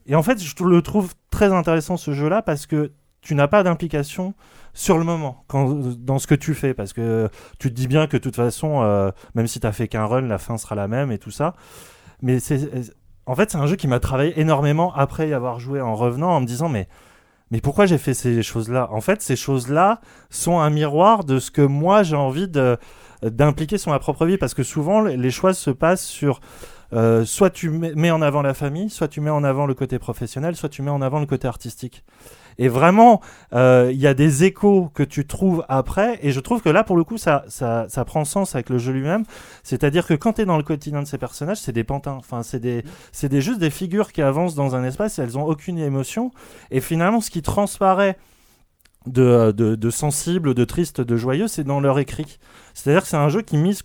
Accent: French